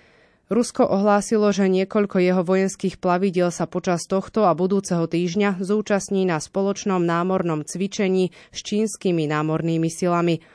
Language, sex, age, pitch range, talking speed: Slovak, female, 20-39, 170-195 Hz, 125 wpm